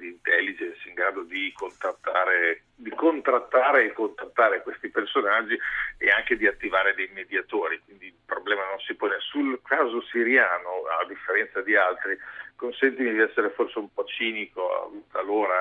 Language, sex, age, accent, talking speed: Italian, male, 50-69, native, 140 wpm